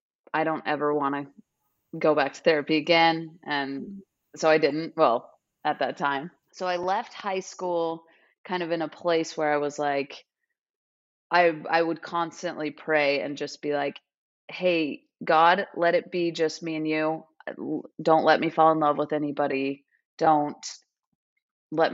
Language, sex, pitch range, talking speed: English, female, 145-175 Hz, 165 wpm